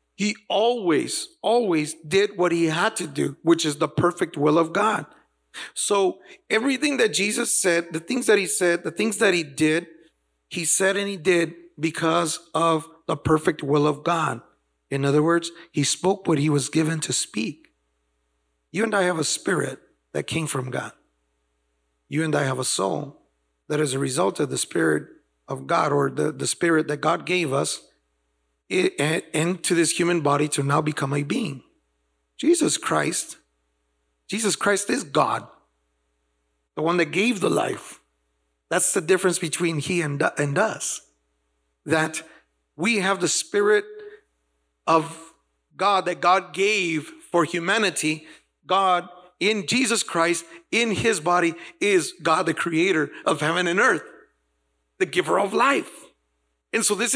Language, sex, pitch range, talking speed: English, male, 135-195 Hz, 155 wpm